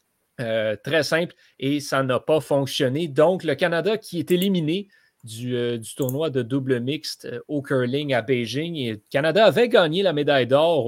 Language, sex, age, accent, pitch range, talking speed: French, male, 30-49, Canadian, 120-145 Hz, 190 wpm